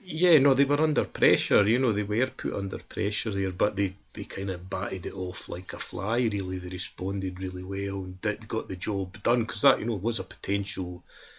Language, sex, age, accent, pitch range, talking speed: English, male, 30-49, British, 90-100 Hz, 215 wpm